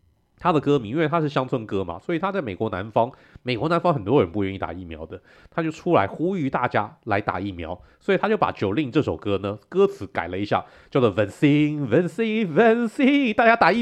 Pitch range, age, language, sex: 90-130 Hz, 30-49, Chinese, male